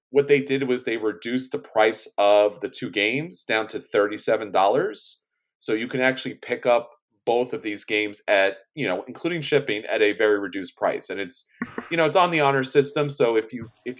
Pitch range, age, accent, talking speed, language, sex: 110-150 Hz, 30-49, American, 205 wpm, English, male